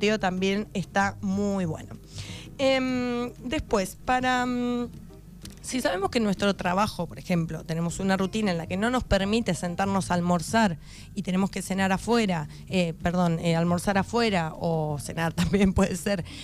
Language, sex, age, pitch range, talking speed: Spanish, female, 20-39, 170-220 Hz, 155 wpm